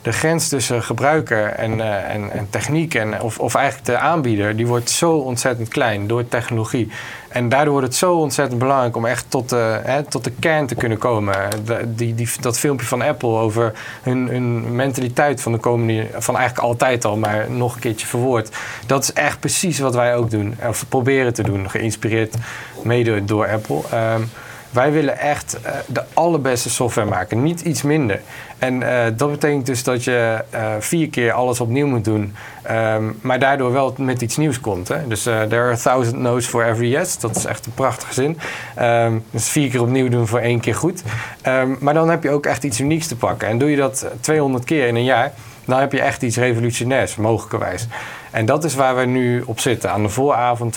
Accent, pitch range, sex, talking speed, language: Dutch, 110-130 Hz, male, 205 wpm, Dutch